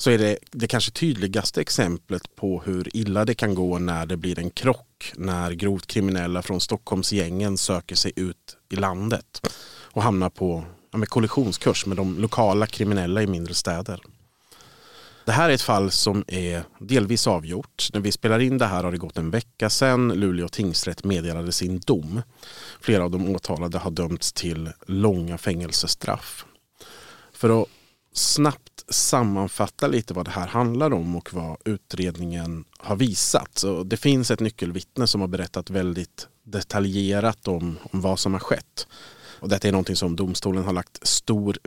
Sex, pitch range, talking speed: male, 90-110 Hz, 165 wpm